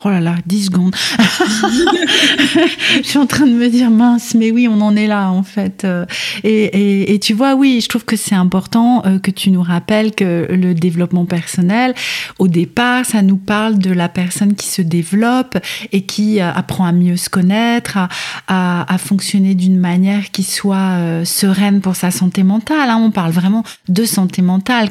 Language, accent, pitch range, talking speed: French, French, 180-220 Hz, 185 wpm